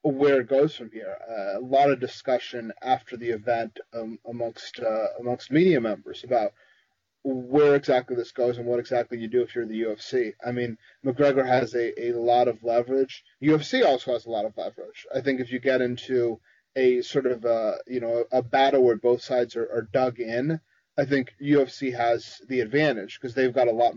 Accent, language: American, English